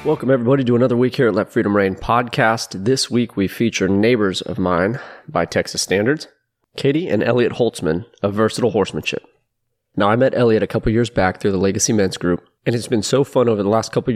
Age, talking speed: 30-49, 210 wpm